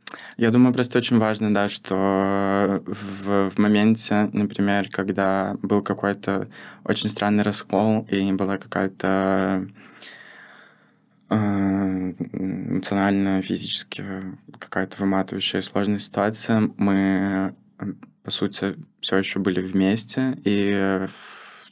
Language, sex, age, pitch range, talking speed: Russian, male, 20-39, 95-105 Hz, 95 wpm